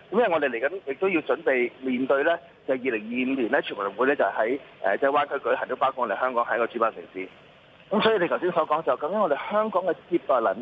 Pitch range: 135-195 Hz